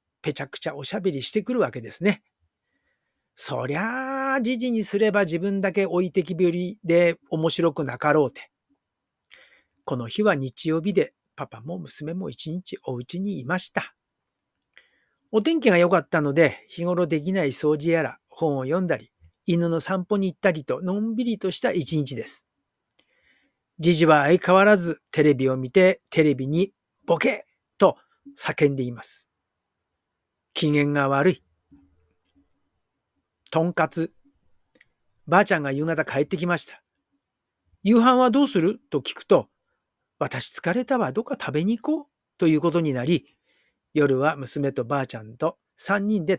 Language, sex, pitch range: Japanese, male, 150-205 Hz